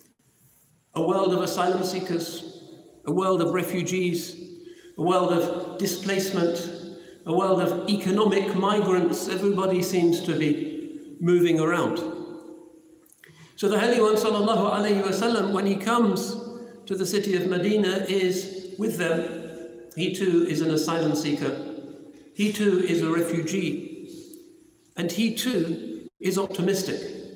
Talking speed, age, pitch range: 120 wpm, 50-69, 165-210 Hz